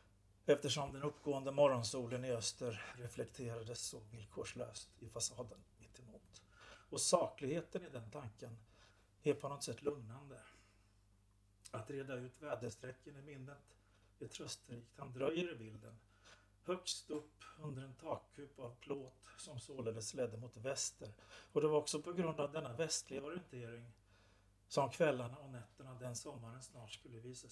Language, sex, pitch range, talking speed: Swedish, male, 105-140 Hz, 145 wpm